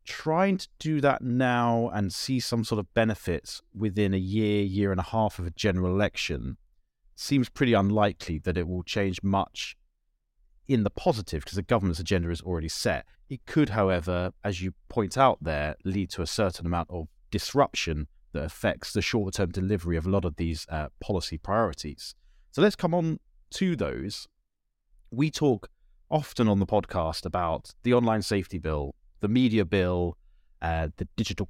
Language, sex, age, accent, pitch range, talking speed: English, male, 30-49, British, 90-115 Hz, 175 wpm